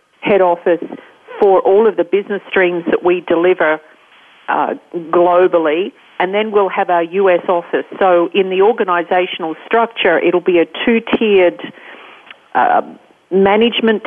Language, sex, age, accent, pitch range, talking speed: English, female, 50-69, Australian, 170-215 Hz, 130 wpm